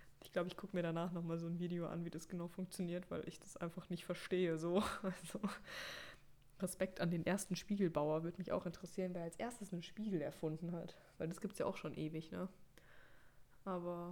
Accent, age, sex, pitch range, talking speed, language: German, 20-39, female, 155-195 Hz, 215 wpm, German